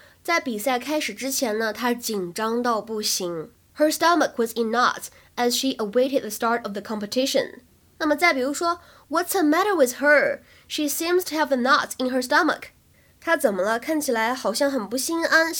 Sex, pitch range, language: female, 225-300 Hz, Chinese